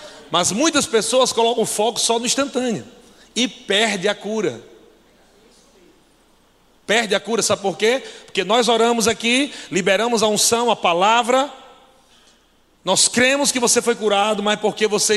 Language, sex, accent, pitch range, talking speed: Portuguese, male, Brazilian, 180-235 Hz, 145 wpm